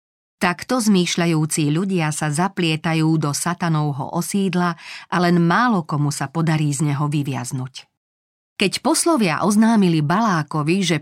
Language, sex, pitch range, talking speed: Slovak, female, 155-190 Hz, 120 wpm